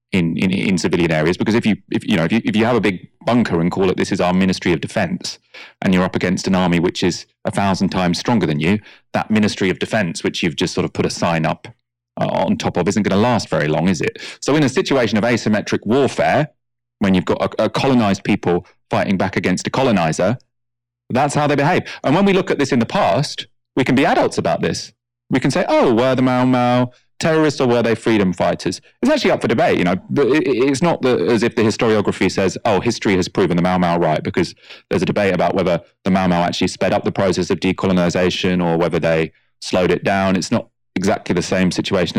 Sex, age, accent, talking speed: male, 30-49, British, 245 wpm